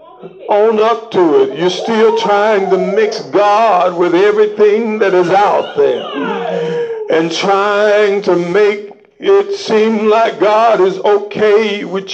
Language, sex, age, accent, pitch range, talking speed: English, male, 50-69, American, 210-255 Hz, 135 wpm